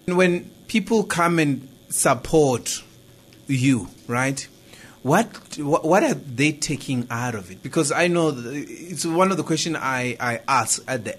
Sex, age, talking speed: male, 30-49, 150 wpm